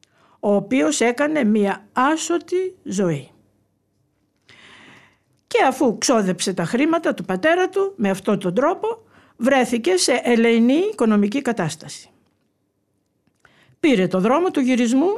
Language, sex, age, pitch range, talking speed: Greek, female, 50-69, 170-275 Hz, 110 wpm